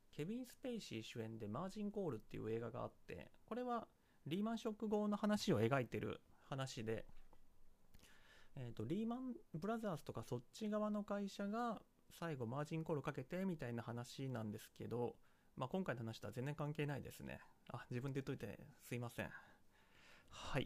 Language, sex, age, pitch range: Japanese, male, 30-49, 125-200 Hz